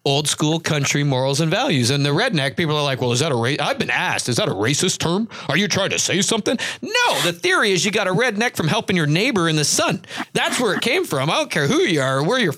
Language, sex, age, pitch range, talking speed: English, male, 40-59, 140-185 Hz, 285 wpm